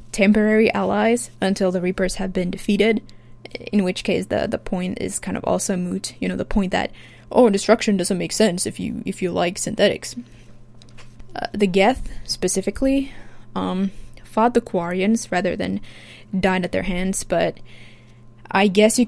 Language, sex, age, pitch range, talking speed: English, female, 20-39, 160-210 Hz, 165 wpm